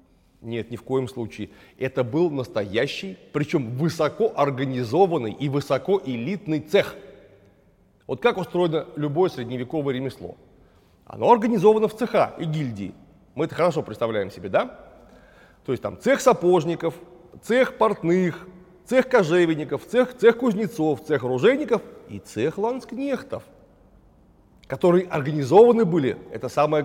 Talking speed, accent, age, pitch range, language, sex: 120 wpm, native, 30-49, 130-185 Hz, Russian, male